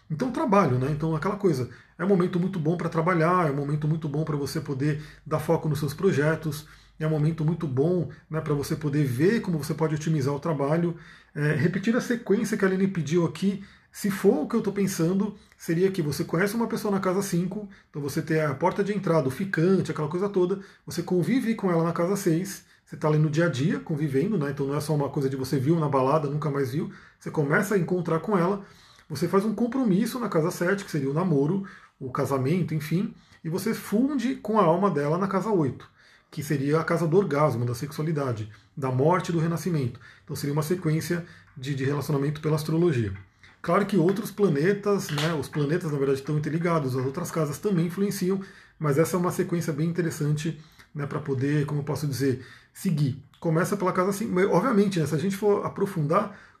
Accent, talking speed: Brazilian, 215 wpm